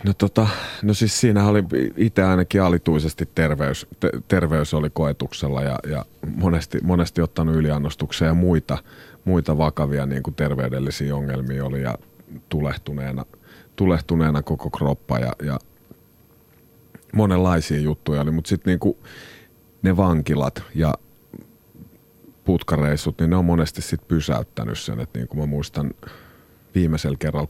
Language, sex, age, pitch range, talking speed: Finnish, male, 30-49, 70-85 Hz, 125 wpm